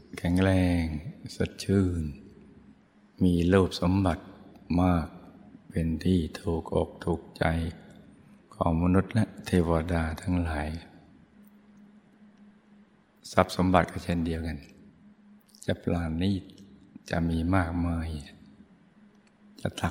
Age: 60-79